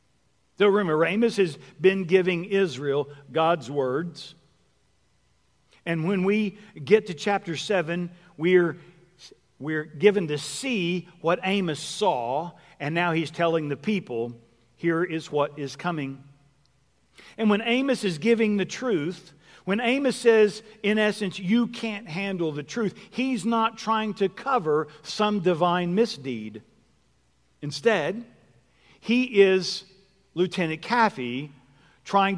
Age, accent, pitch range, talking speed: 50-69, American, 155-210 Hz, 120 wpm